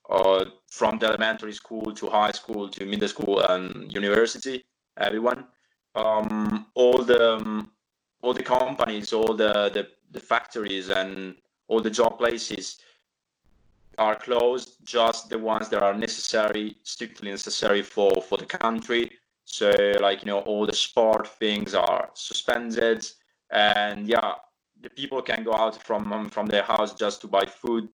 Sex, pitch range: male, 105-120 Hz